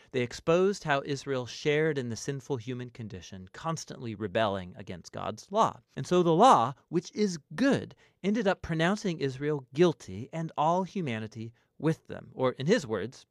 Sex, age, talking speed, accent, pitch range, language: male, 40-59, 160 wpm, American, 115-170 Hz, English